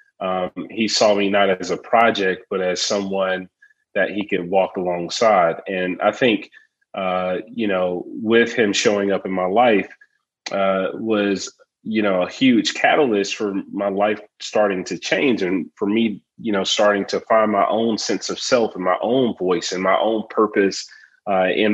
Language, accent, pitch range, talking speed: English, American, 90-110 Hz, 180 wpm